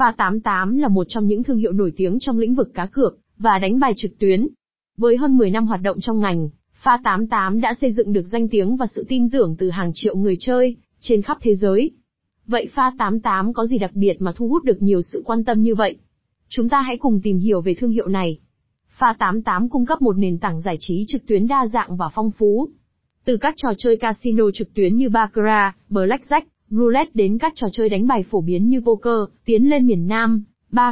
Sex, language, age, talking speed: female, Vietnamese, 20-39, 230 wpm